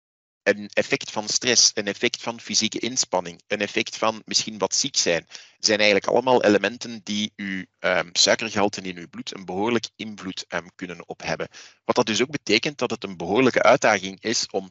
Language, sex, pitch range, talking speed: Dutch, male, 100-120 Hz, 180 wpm